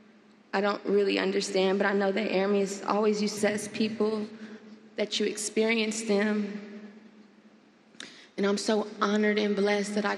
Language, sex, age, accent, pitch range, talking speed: English, female, 20-39, American, 195-220 Hz, 160 wpm